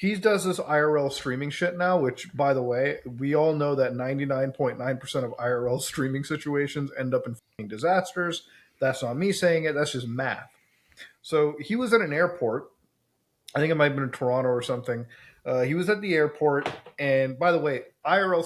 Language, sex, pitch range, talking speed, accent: English, male, 130-170 Hz, 195 wpm, American